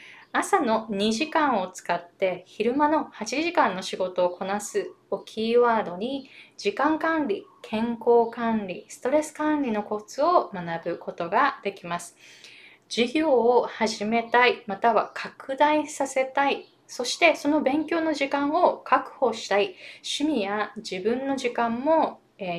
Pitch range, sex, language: 195-295 Hz, female, Japanese